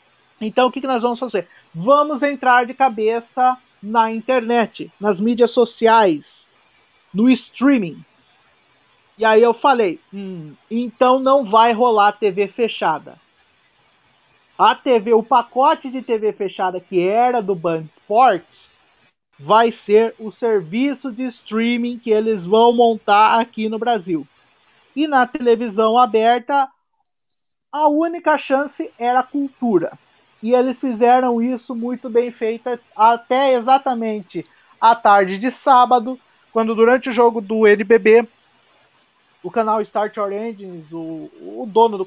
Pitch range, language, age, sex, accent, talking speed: 220-255 Hz, Portuguese, 50-69, male, Brazilian, 130 wpm